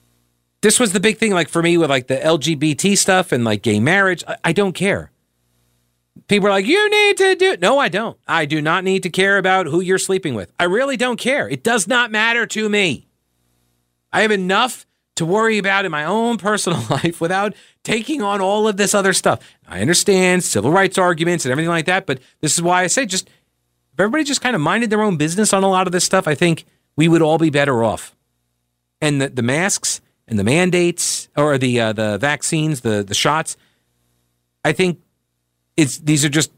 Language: English